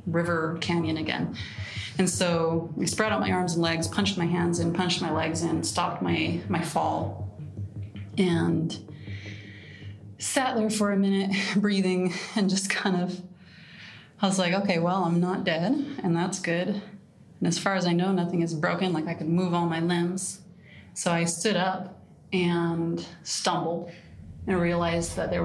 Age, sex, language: 30-49, female, English